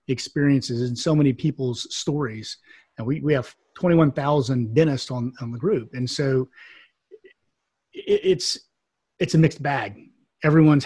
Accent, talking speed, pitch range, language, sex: American, 140 wpm, 130-155 Hz, English, male